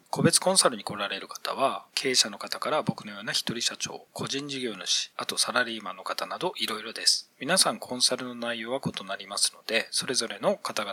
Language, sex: Japanese, male